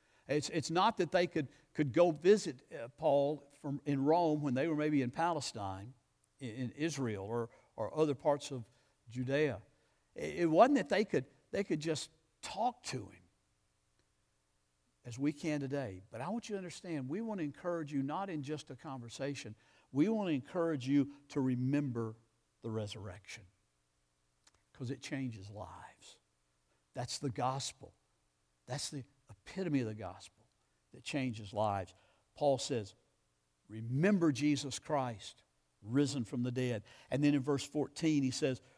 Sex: male